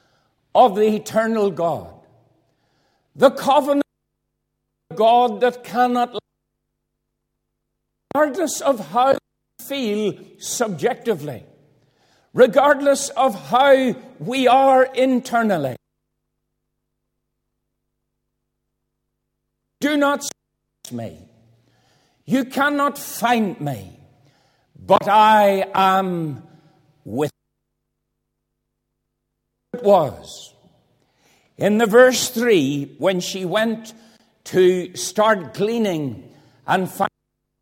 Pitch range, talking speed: 150-240 Hz, 80 wpm